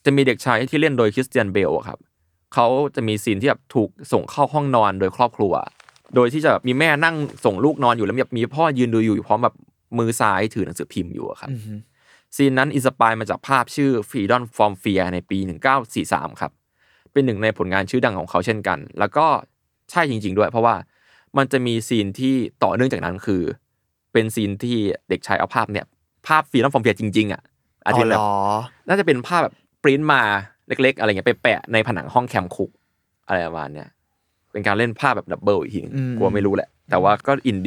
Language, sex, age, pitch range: Thai, male, 20-39, 100-130 Hz